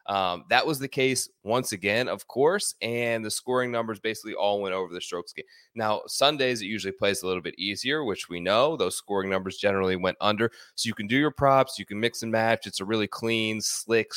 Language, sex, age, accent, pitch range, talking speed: English, male, 20-39, American, 95-120 Hz, 225 wpm